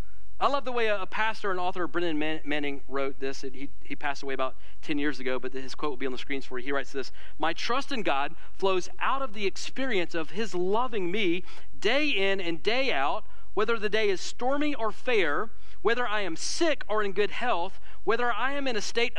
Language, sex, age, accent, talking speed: English, male, 40-59, American, 225 wpm